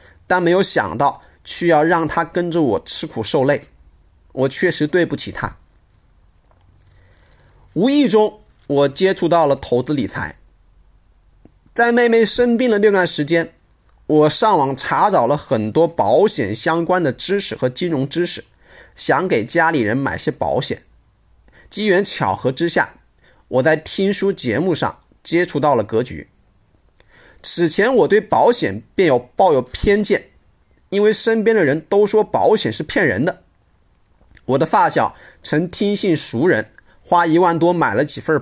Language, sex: Chinese, male